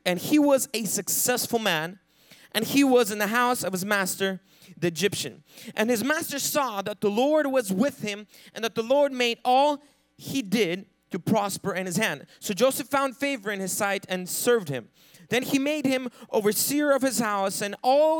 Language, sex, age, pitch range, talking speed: English, male, 20-39, 185-250 Hz, 200 wpm